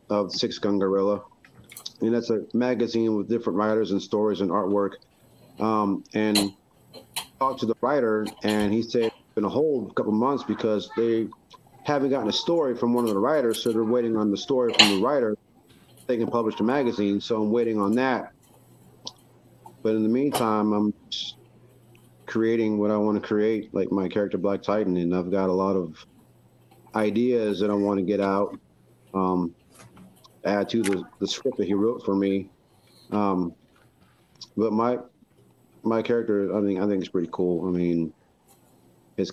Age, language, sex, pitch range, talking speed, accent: 40-59, English, male, 100-115 Hz, 180 wpm, American